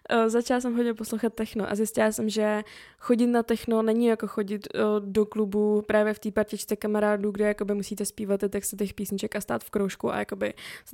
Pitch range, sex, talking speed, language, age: 210-230 Hz, female, 195 wpm, Czech, 20-39